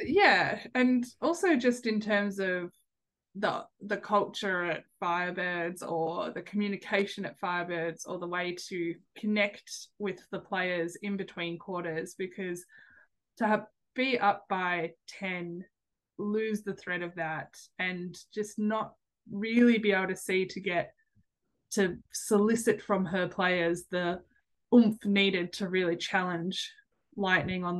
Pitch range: 180-215 Hz